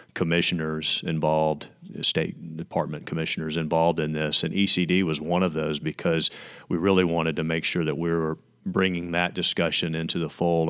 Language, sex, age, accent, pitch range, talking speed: English, male, 40-59, American, 80-90 Hz, 170 wpm